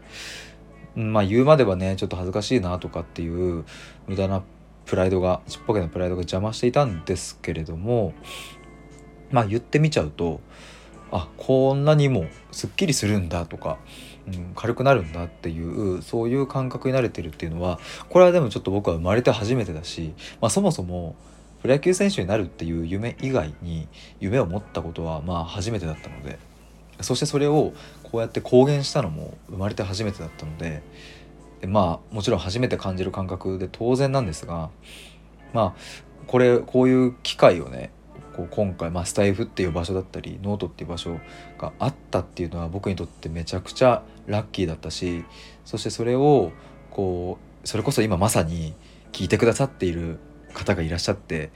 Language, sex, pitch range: Japanese, male, 85-120 Hz